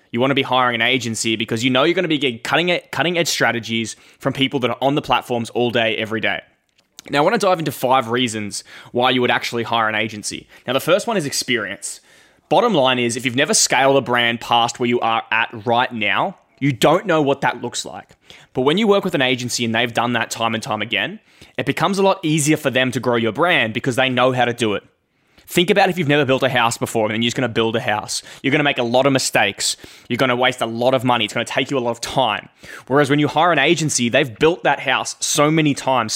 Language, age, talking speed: English, 10-29, 265 wpm